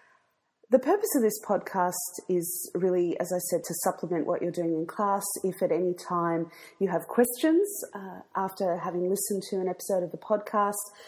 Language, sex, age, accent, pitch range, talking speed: English, female, 30-49, Australian, 165-195 Hz, 185 wpm